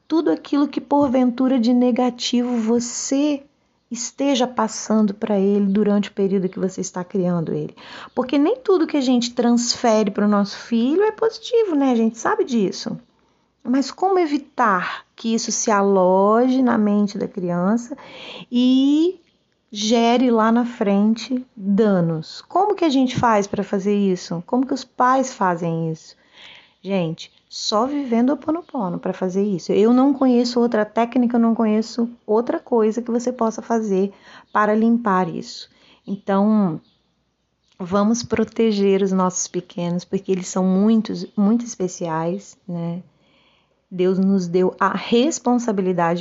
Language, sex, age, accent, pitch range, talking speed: Portuguese, female, 30-49, Brazilian, 200-275 Hz, 145 wpm